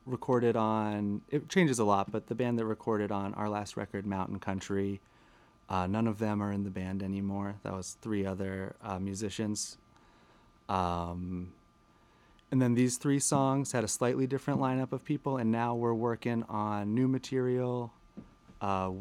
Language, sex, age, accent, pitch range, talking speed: English, male, 30-49, American, 95-115 Hz, 165 wpm